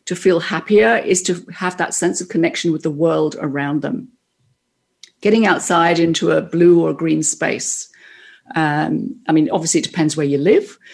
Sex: female